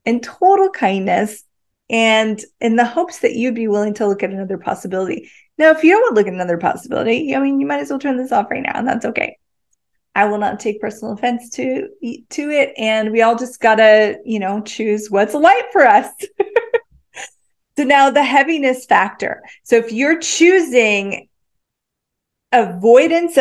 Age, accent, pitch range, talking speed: 30-49, American, 205-285 Hz, 185 wpm